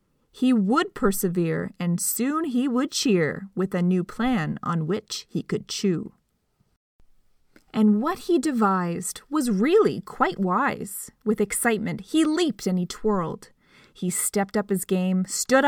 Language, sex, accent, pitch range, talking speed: English, female, American, 195-300 Hz, 145 wpm